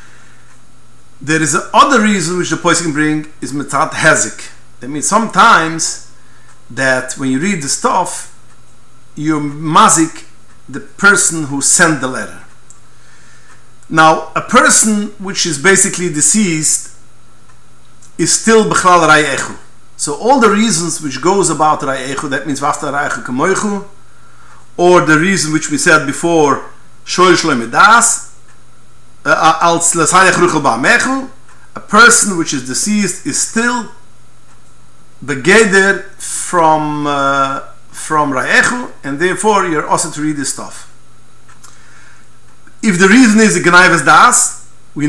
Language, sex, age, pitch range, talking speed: English, male, 50-69, 140-195 Hz, 115 wpm